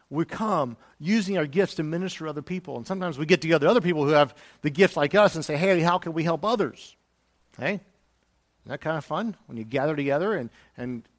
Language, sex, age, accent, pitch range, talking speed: English, male, 50-69, American, 115-170 Hz, 230 wpm